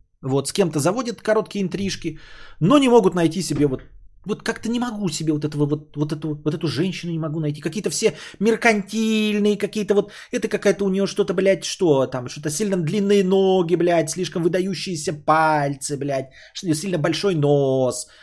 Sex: male